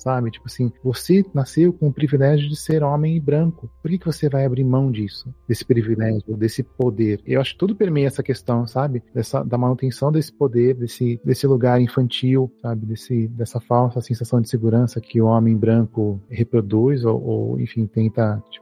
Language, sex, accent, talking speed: Portuguese, male, Brazilian, 190 wpm